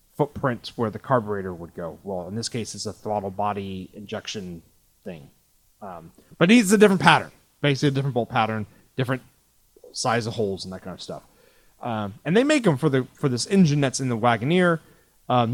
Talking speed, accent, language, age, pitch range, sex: 200 wpm, American, English, 30-49, 110-155 Hz, male